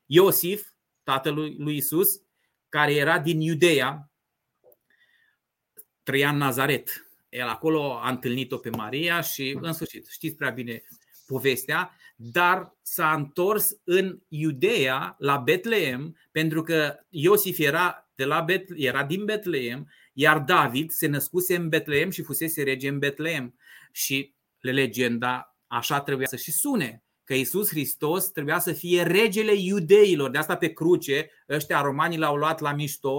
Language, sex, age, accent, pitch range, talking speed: Romanian, male, 30-49, native, 140-175 Hz, 140 wpm